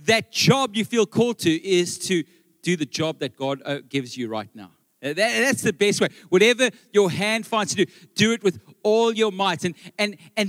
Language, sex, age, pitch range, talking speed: English, male, 40-59, 170-220 Hz, 205 wpm